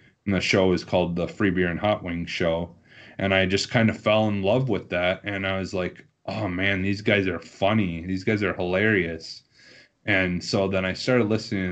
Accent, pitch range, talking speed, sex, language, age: American, 90-110 Hz, 215 wpm, male, English, 30-49